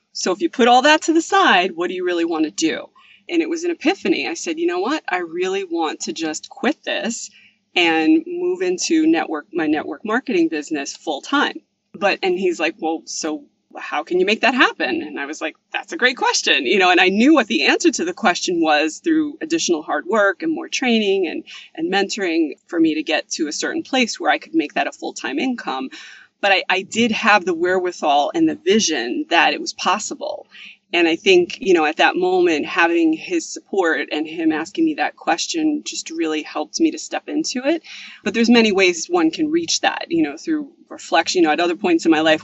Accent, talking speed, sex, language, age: American, 230 wpm, female, English, 20-39